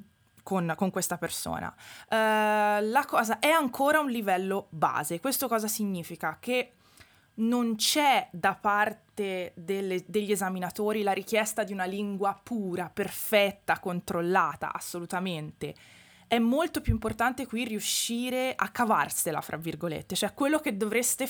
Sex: female